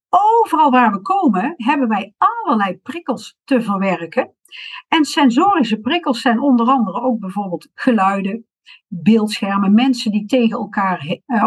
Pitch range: 215-275 Hz